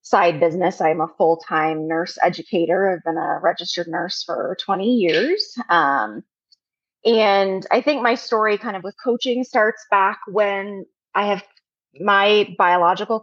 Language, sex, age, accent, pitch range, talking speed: English, female, 30-49, American, 165-225 Hz, 145 wpm